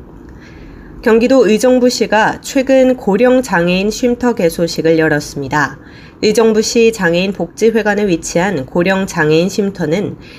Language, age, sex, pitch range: Korean, 30-49, female, 165-225 Hz